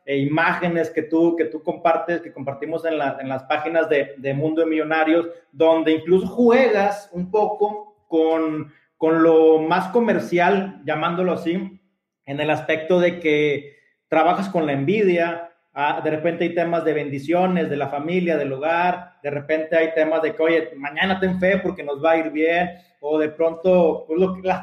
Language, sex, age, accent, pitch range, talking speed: Spanish, male, 30-49, Mexican, 160-195 Hz, 180 wpm